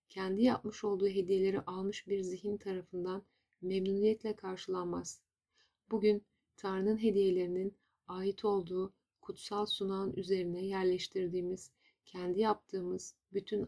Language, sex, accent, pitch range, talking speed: Turkish, female, native, 185-210 Hz, 95 wpm